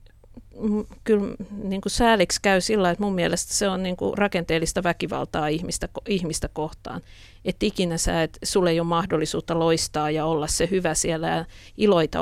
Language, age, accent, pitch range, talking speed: Finnish, 50-69, native, 155-180 Hz, 155 wpm